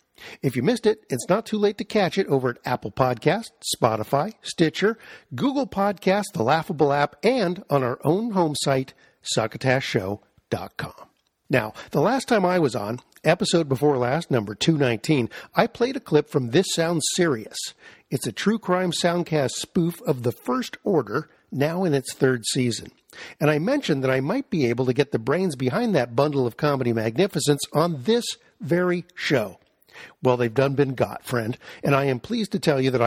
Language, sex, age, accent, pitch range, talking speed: English, male, 50-69, American, 130-185 Hz, 180 wpm